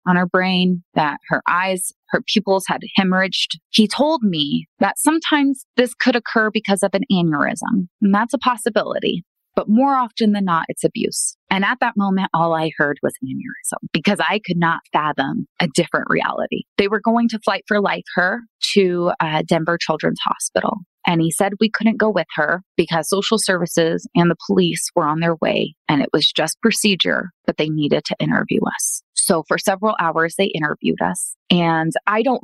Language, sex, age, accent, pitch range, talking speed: English, female, 20-39, American, 160-210 Hz, 185 wpm